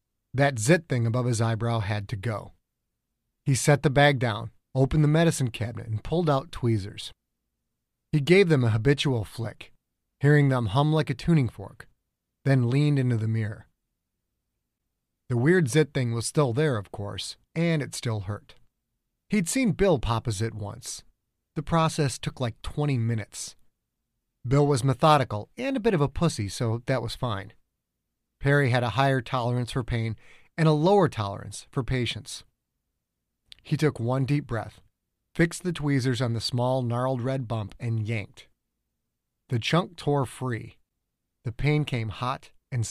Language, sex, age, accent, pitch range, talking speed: English, male, 30-49, American, 110-145 Hz, 165 wpm